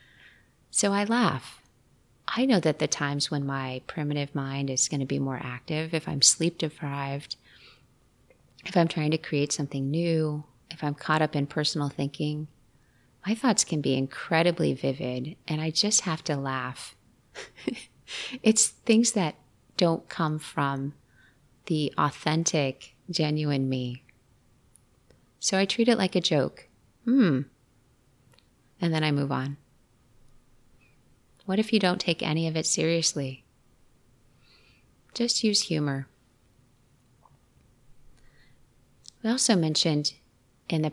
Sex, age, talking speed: female, 30-49, 130 wpm